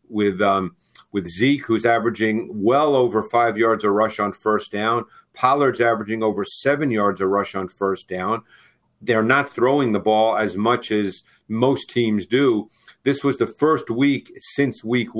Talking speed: 170 wpm